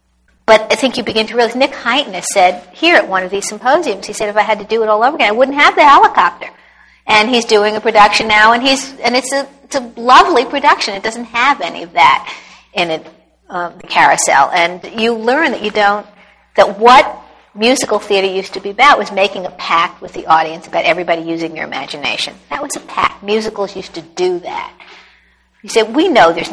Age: 50-69